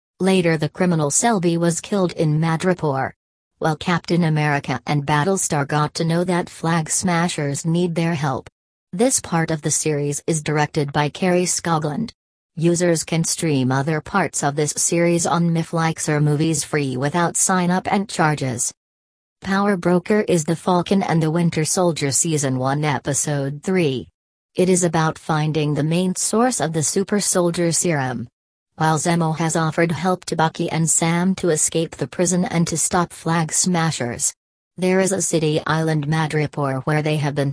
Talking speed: 165 wpm